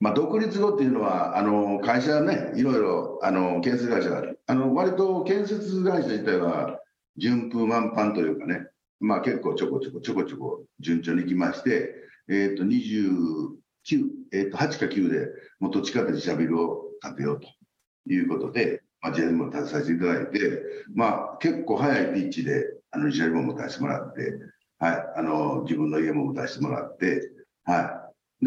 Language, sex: Japanese, male